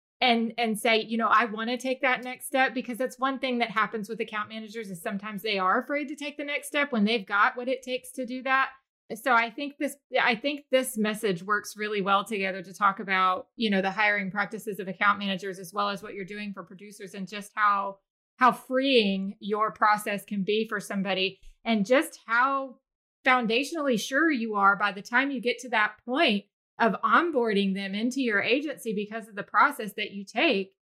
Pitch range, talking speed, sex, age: 210-265 Hz, 215 wpm, female, 30-49